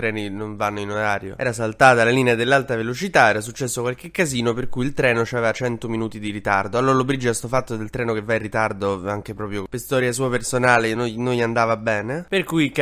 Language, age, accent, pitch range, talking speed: Italian, 20-39, native, 110-125 Hz, 215 wpm